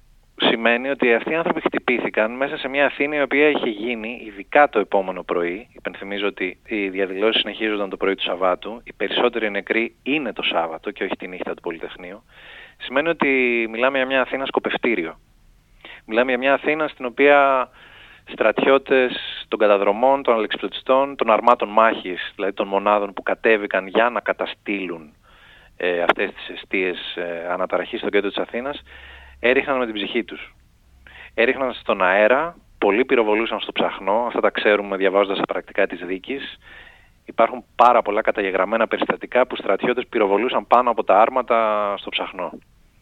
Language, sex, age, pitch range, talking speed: Greek, male, 30-49, 100-130 Hz, 155 wpm